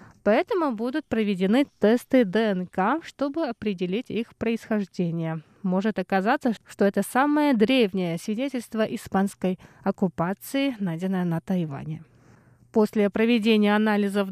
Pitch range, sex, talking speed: 195-255 Hz, female, 100 wpm